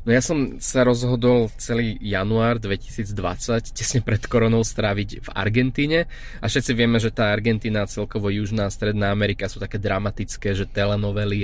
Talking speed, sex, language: 150 wpm, male, Slovak